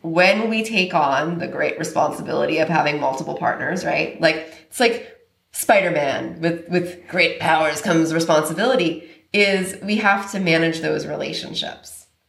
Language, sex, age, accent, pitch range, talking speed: English, female, 20-39, American, 155-195 Hz, 140 wpm